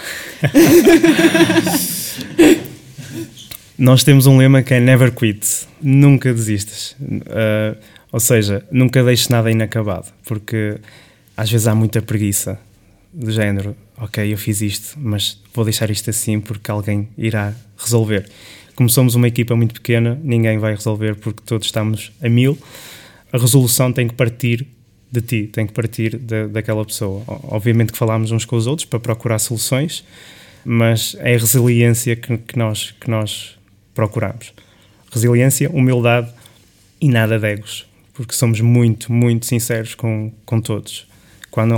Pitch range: 105-120 Hz